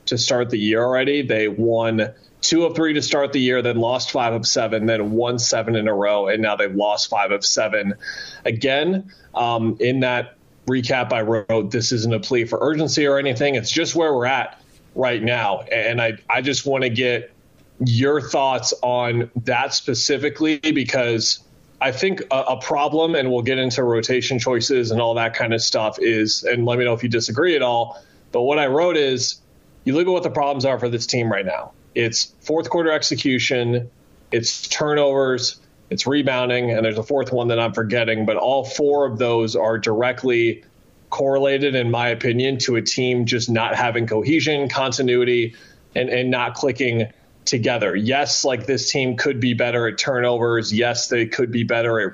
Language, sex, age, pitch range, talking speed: English, male, 30-49, 115-135 Hz, 190 wpm